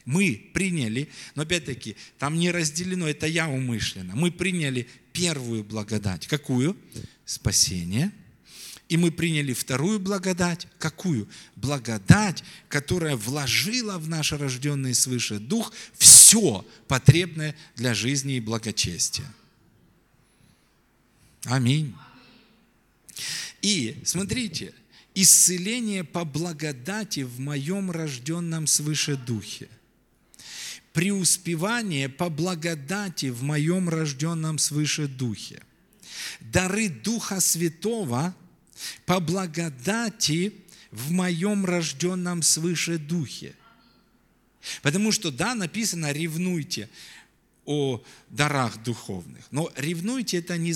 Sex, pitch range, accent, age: male, 130-180 Hz, native, 40-59